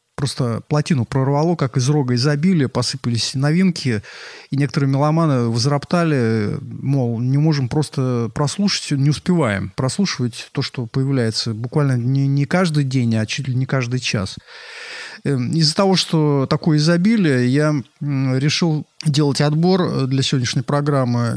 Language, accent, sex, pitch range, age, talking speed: Russian, native, male, 125-155 Hz, 30-49, 130 wpm